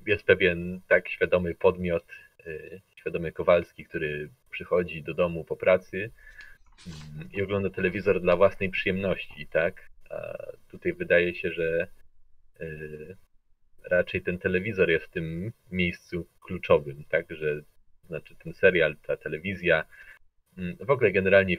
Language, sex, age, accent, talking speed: Polish, male, 30-49, native, 130 wpm